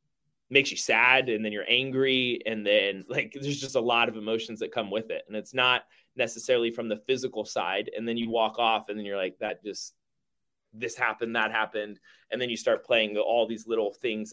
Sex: male